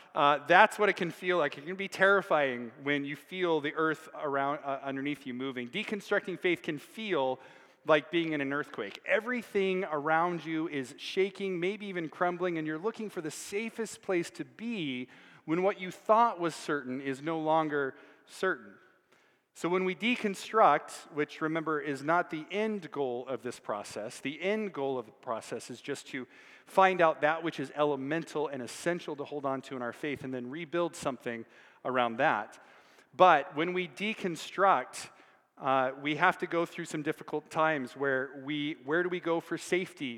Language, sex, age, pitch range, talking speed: English, male, 40-59, 140-180 Hz, 180 wpm